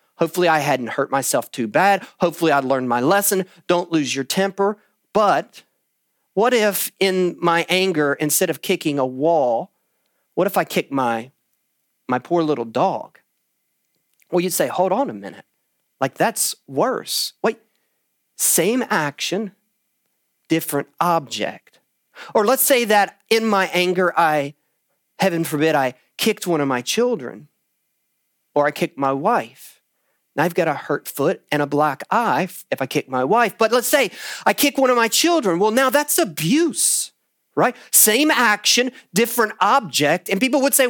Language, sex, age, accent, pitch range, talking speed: English, male, 40-59, American, 170-250 Hz, 160 wpm